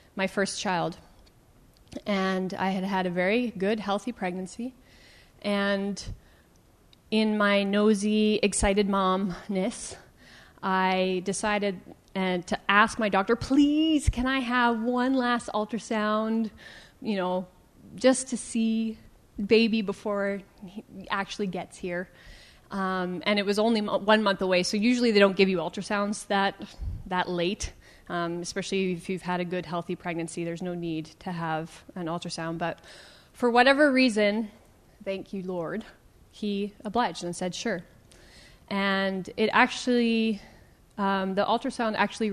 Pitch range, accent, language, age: 180-215 Hz, American, English, 30-49